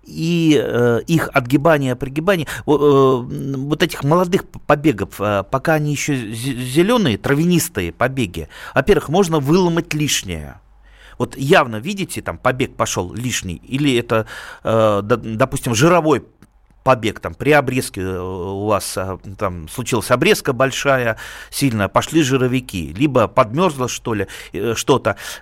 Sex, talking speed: male, 115 wpm